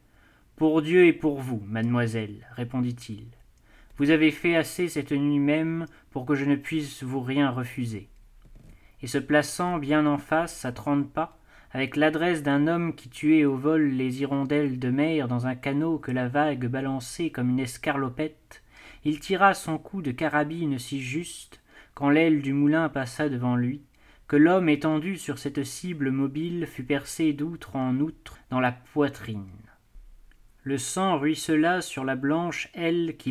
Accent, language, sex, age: French, French, male, 30-49